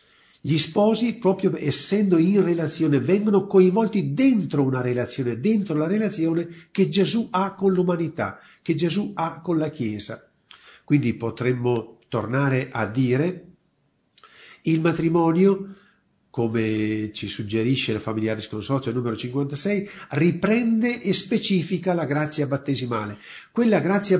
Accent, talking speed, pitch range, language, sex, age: native, 120 wpm, 130-190 Hz, Italian, male, 50-69